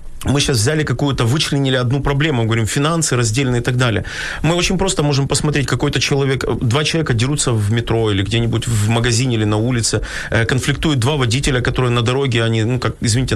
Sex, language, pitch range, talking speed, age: male, Ukrainian, 120-150 Hz, 190 wpm, 30-49